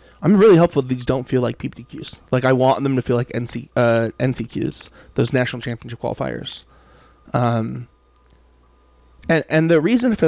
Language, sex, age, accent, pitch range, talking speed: English, male, 30-49, American, 115-140 Hz, 170 wpm